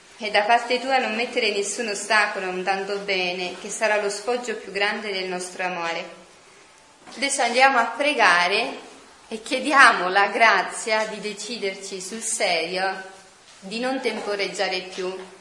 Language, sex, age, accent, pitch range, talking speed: Italian, female, 20-39, native, 190-240 Hz, 140 wpm